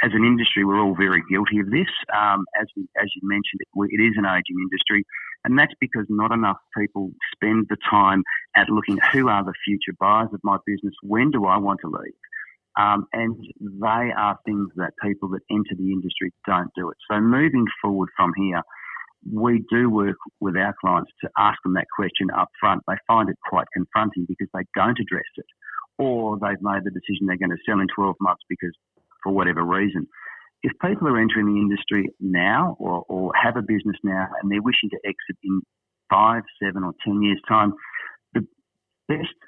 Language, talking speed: English, 200 wpm